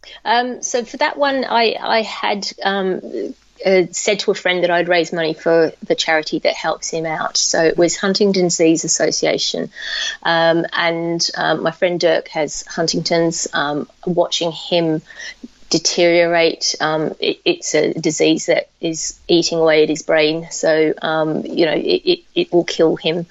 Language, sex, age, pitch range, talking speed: English, female, 30-49, 165-195 Hz, 165 wpm